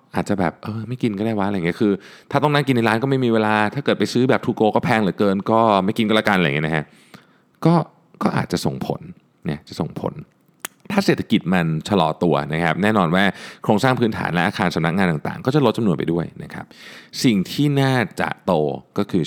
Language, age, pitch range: Thai, 20-39, 85-130 Hz